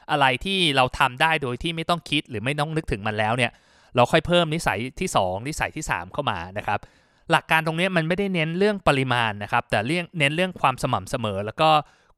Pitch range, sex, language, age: 130-170 Hz, male, Thai, 20-39